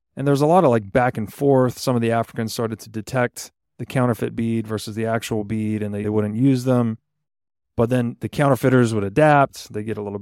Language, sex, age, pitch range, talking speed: English, male, 30-49, 110-135 Hz, 230 wpm